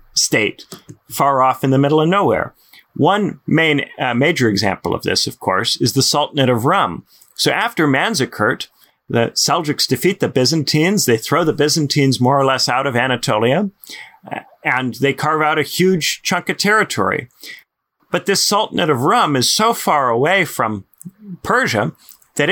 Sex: male